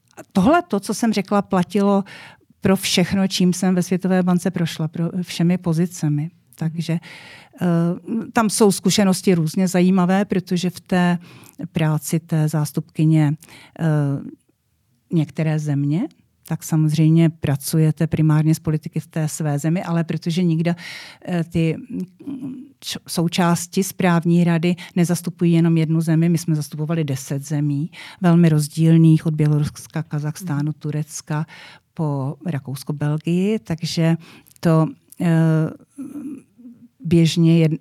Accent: native